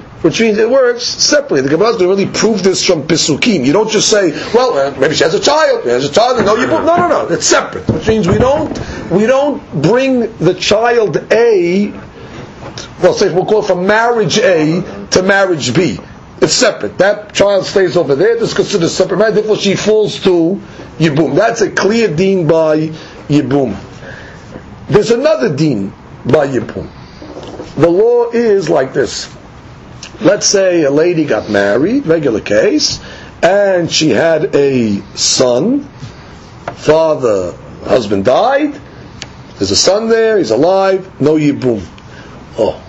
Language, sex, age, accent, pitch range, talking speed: English, male, 50-69, American, 155-220 Hz, 155 wpm